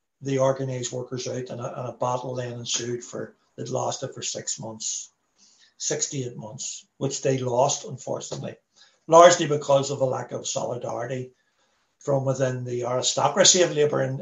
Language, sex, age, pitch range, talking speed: English, male, 60-79, 130-175 Hz, 165 wpm